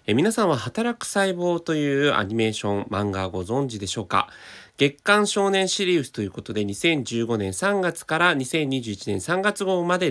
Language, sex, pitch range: Japanese, male, 105-160 Hz